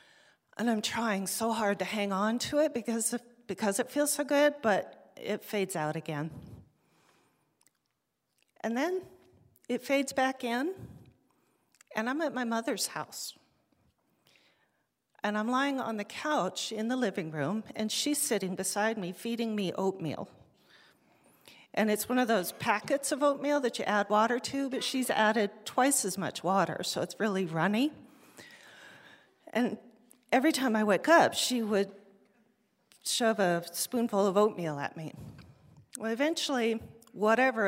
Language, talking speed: English, 150 wpm